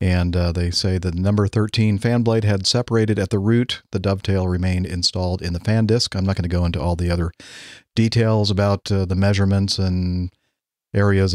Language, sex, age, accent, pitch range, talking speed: English, male, 40-59, American, 90-110 Hz, 200 wpm